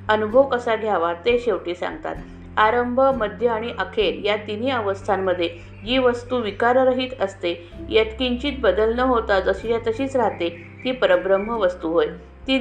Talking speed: 145 wpm